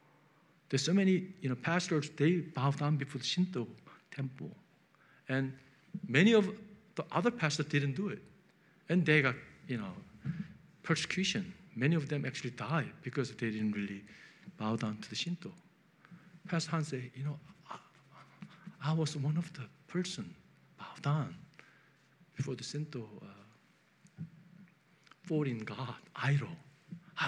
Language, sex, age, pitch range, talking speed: English, male, 50-69, 140-185 Hz, 140 wpm